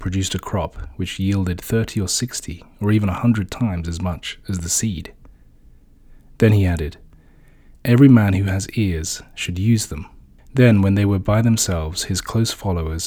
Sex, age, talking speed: male, 30-49, 175 wpm